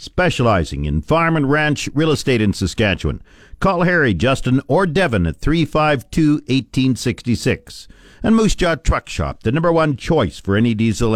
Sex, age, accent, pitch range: male, 50-69, American, 105-150 Hz